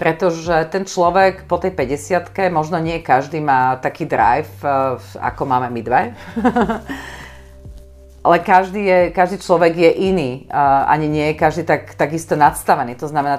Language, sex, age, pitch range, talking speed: Slovak, female, 40-59, 135-170 Hz, 150 wpm